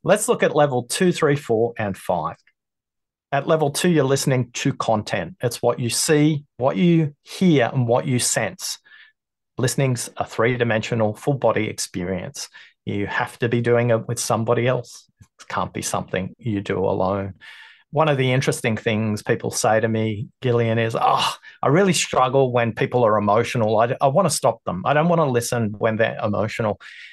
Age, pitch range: 30-49, 115-145 Hz